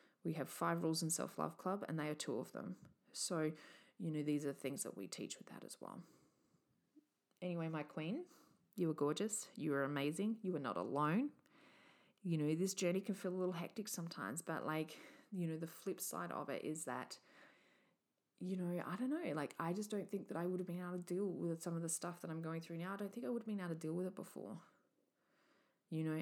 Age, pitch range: 20-39, 160-185 Hz